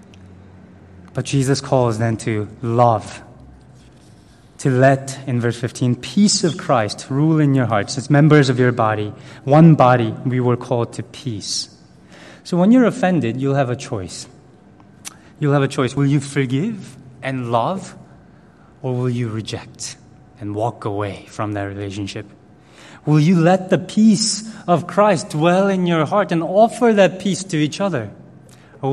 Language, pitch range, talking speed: English, 120-150 Hz, 160 wpm